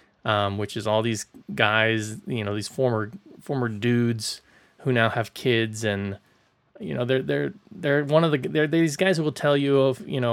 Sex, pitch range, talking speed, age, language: male, 115-145 Hz, 210 wpm, 20-39, English